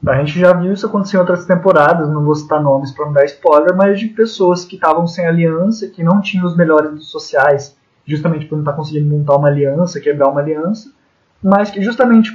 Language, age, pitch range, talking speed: Portuguese, 20-39, 155-195 Hz, 215 wpm